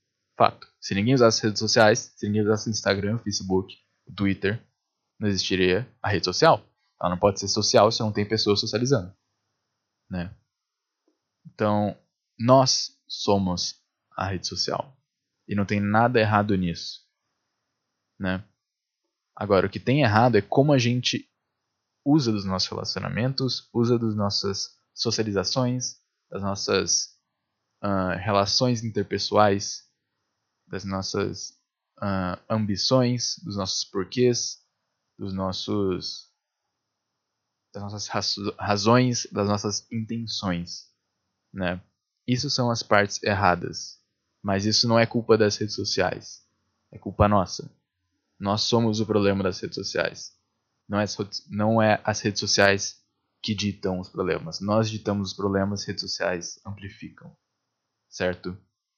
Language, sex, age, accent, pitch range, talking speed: Portuguese, male, 10-29, Brazilian, 100-115 Hz, 125 wpm